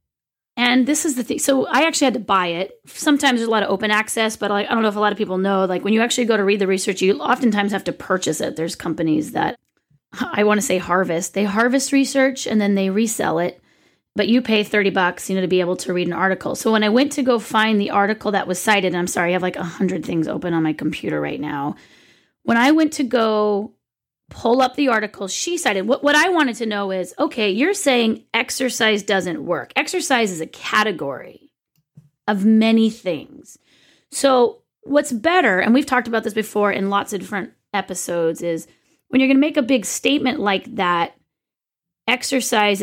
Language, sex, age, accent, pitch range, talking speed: English, female, 30-49, American, 185-245 Hz, 225 wpm